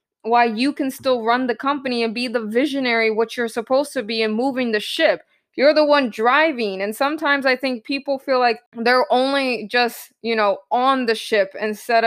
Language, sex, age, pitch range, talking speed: English, female, 20-39, 220-260 Hz, 200 wpm